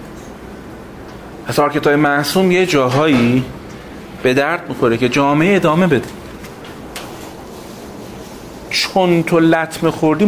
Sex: male